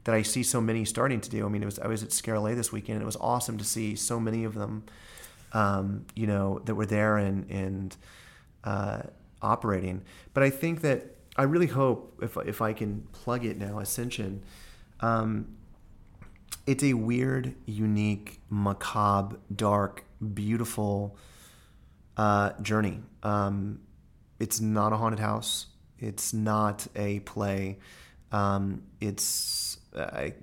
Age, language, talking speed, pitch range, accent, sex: 30-49, English, 150 wpm, 100-110 Hz, American, male